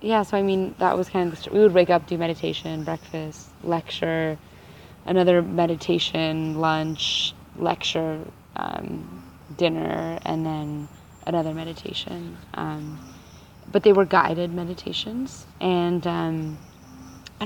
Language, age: English, 20-39